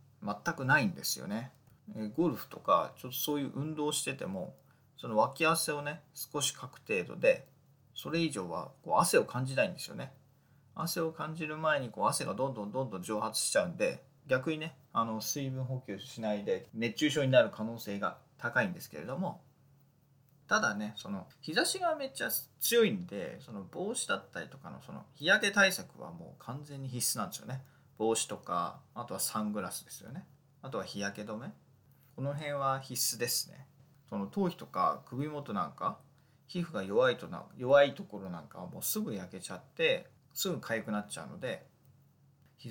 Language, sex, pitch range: Japanese, male, 120-150 Hz